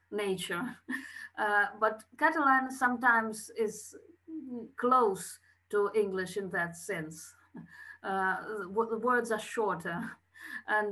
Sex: female